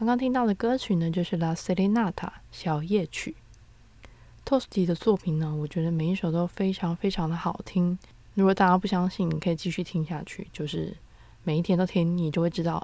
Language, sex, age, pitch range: Chinese, female, 20-39, 165-210 Hz